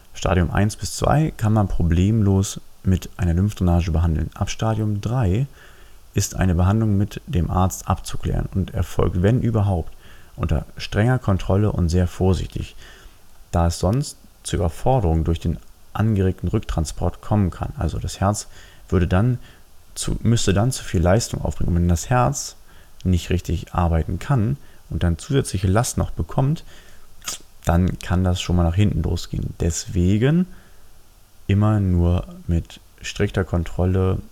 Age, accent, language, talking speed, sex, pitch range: 30-49, German, German, 145 wpm, male, 85-105 Hz